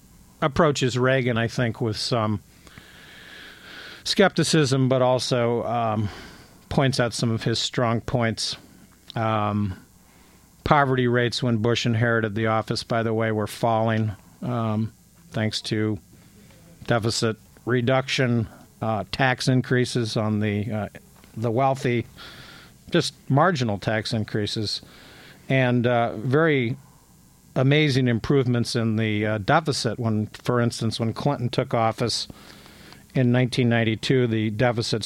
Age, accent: 50-69, American